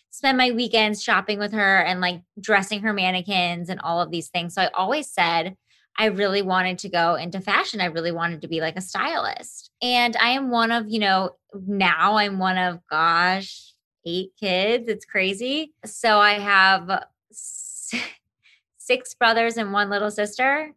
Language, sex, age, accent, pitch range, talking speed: English, female, 20-39, American, 185-230 Hz, 175 wpm